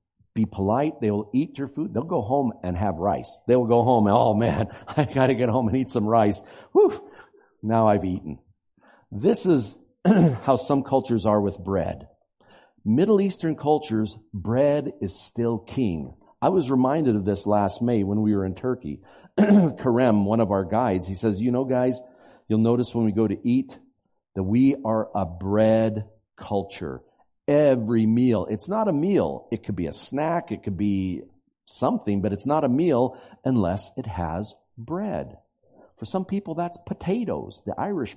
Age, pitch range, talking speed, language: 50-69, 100-130 Hz, 175 wpm, English